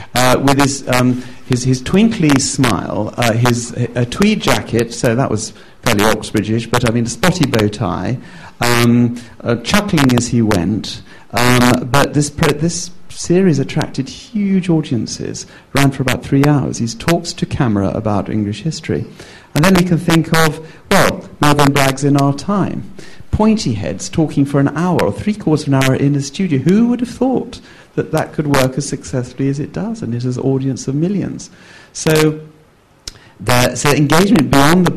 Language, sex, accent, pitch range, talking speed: English, male, British, 110-145 Hz, 180 wpm